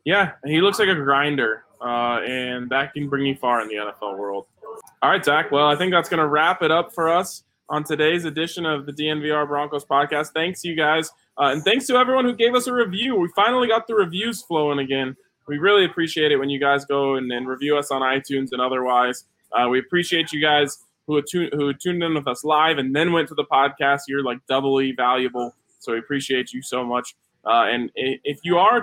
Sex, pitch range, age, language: male, 125-155 Hz, 20-39, English